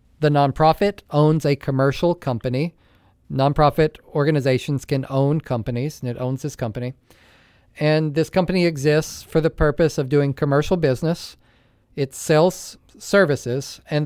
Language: English